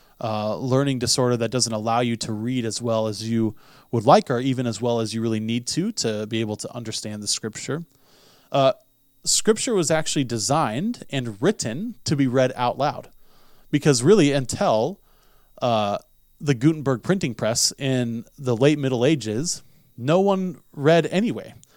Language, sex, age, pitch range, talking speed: English, male, 20-39, 125-160 Hz, 165 wpm